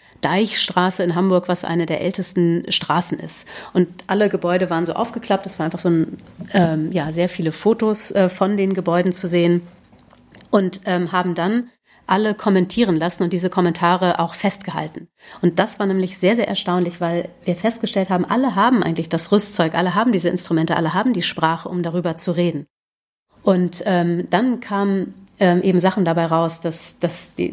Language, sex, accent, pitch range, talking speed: German, female, German, 170-205 Hz, 175 wpm